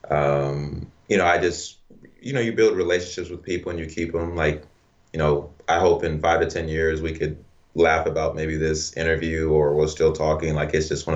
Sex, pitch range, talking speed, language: male, 75-85 Hz, 220 wpm, Hungarian